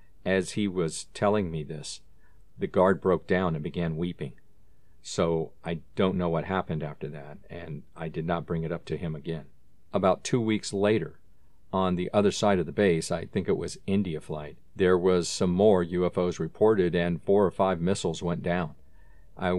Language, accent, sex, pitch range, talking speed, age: English, American, male, 85-100 Hz, 190 wpm, 50-69